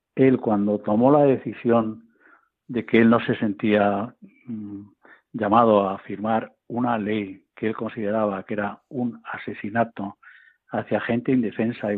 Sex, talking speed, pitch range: male, 140 wpm, 105-130 Hz